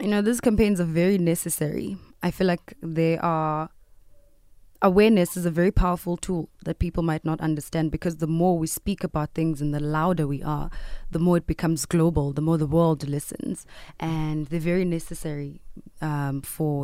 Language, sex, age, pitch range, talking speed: English, female, 20-39, 150-175 Hz, 180 wpm